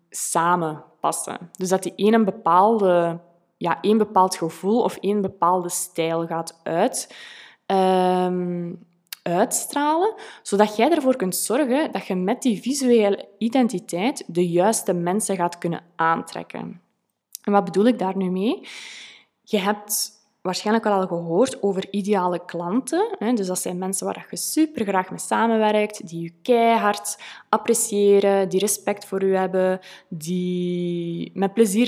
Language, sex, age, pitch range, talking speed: Dutch, female, 20-39, 175-215 Hz, 130 wpm